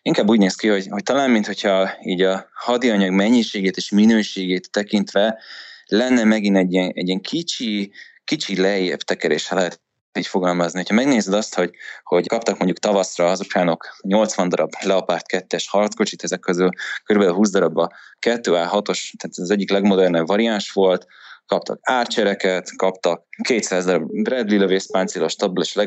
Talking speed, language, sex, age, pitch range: 155 wpm, Hungarian, male, 20-39, 95-105 Hz